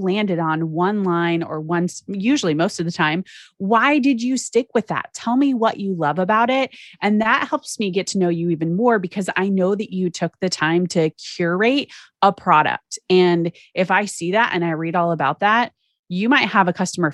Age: 30-49